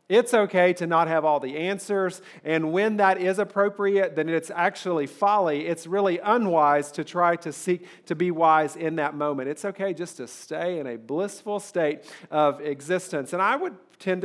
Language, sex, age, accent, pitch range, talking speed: English, male, 40-59, American, 150-190 Hz, 190 wpm